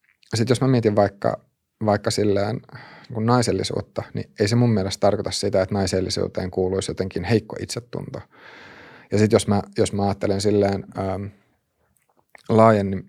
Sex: male